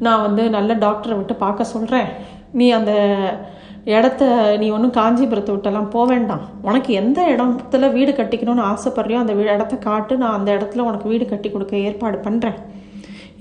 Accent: native